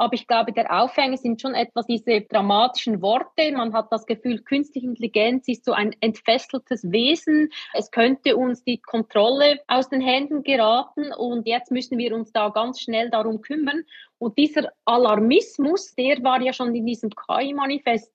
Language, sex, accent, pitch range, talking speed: German, female, Swiss, 225-275 Hz, 170 wpm